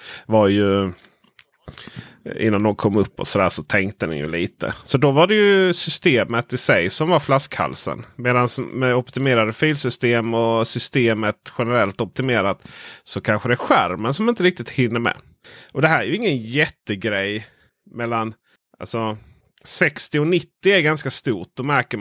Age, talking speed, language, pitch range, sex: 30-49, 160 wpm, Swedish, 105-155 Hz, male